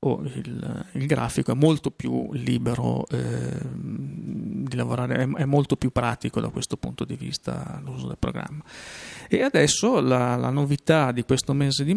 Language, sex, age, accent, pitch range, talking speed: Italian, male, 40-59, native, 120-135 Hz, 165 wpm